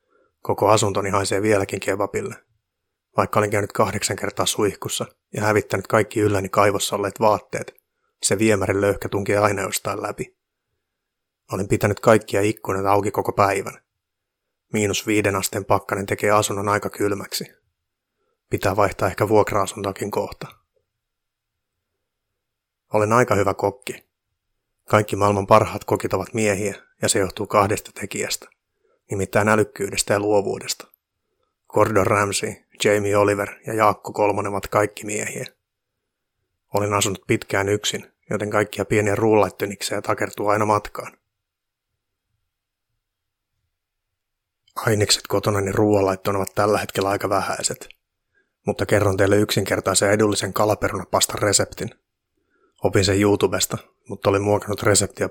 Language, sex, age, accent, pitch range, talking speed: Finnish, male, 30-49, native, 100-105 Hz, 115 wpm